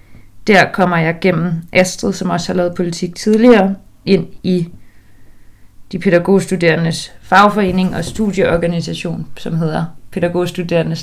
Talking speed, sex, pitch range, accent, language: 115 wpm, female, 125-195 Hz, native, Danish